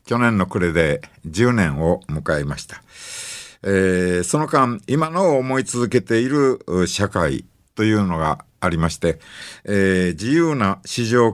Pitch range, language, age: 95-135 Hz, Japanese, 50-69